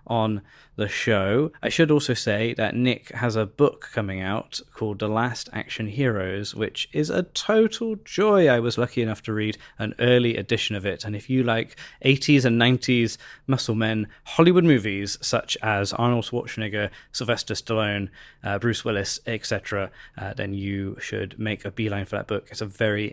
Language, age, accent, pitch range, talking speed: English, 20-39, British, 105-135 Hz, 175 wpm